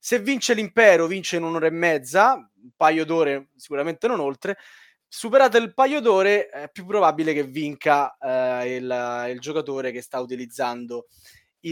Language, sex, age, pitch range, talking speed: Italian, male, 20-39, 130-185 Hz, 160 wpm